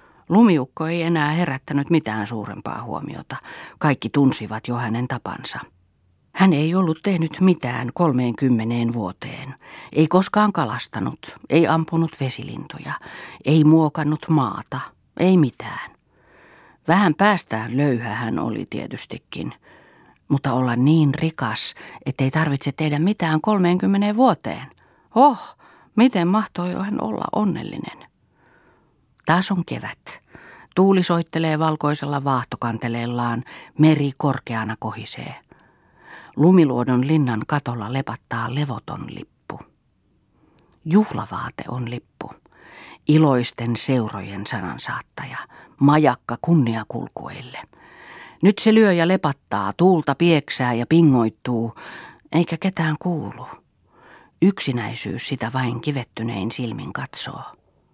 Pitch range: 120-165 Hz